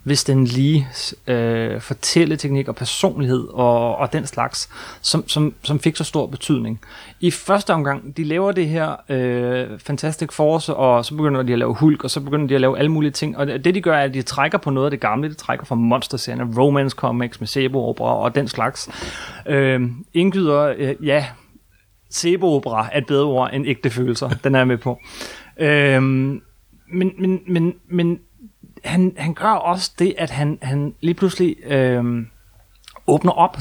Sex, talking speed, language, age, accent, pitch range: male, 180 wpm, Danish, 30-49, native, 130-165 Hz